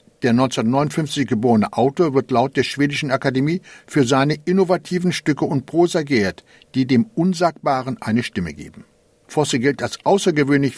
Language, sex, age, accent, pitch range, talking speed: German, male, 60-79, German, 125-165 Hz, 145 wpm